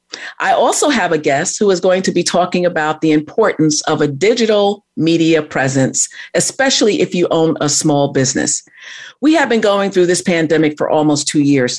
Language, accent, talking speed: English, American, 190 wpm